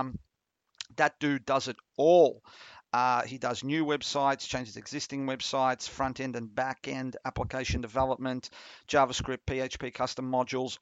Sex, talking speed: male, 140 wpm